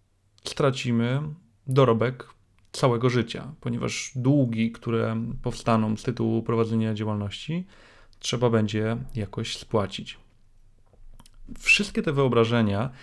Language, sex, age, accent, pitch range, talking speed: Polish, male, 30-49, native, 110-130 Hz, 90 wpm